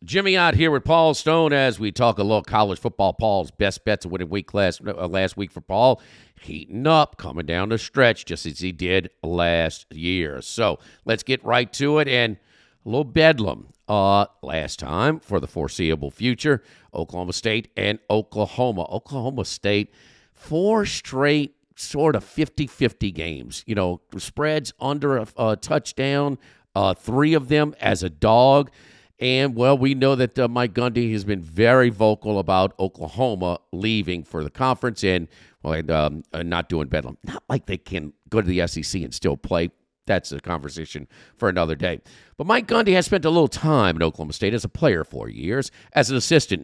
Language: English